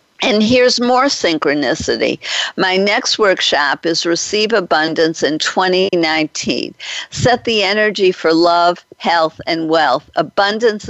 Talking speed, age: 115 wpm, 50-69